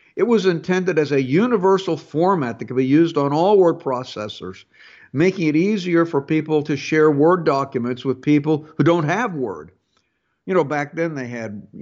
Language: English